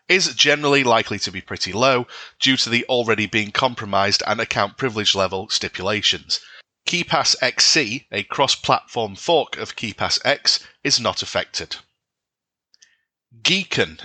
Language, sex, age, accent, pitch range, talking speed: English, male, 30-49, British, 110-140 Hz, 130 wpm